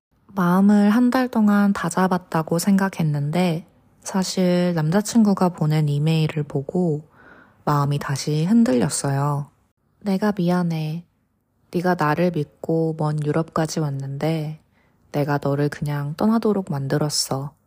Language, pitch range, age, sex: Korean, 150-185 Hz, 20-39, female